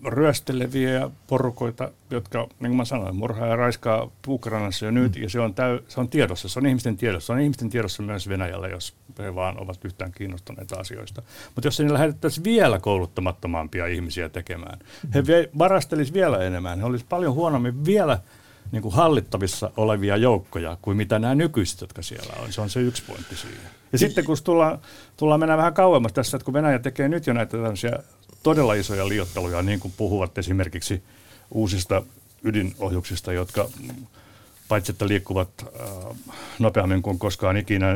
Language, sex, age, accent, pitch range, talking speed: Finnish, male, 60-79, native, 95-125 Hz, 165 wpm